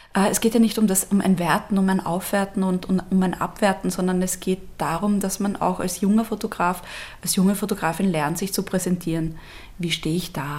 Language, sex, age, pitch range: German, female, 20-39, 180-215 Hz